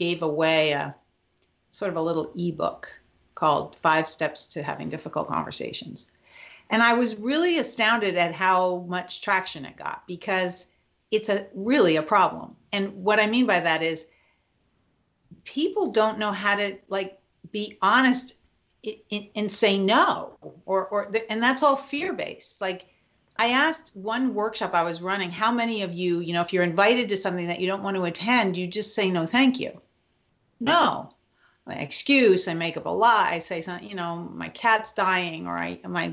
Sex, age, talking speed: female, 50-69, 180 wpm